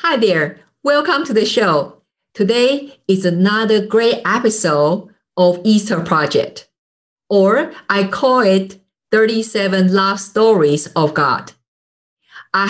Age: 50-69